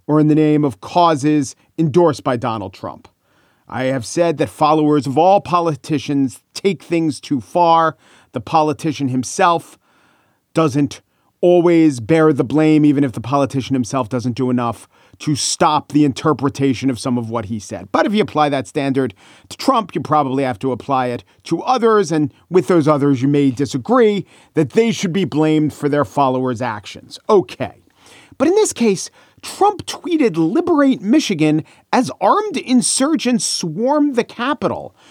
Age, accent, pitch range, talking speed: 40-59, American, 140-210 Hz, 160 wpm